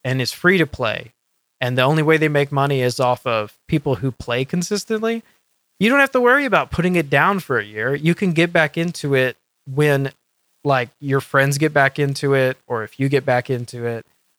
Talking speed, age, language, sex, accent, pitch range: 215 wpm, 20-39, English, male, American, 125-155 Hz